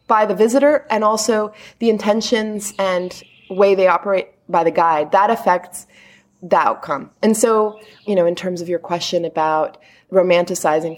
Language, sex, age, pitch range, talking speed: English, female, 20-39, 175-225 Hz, 160 wpm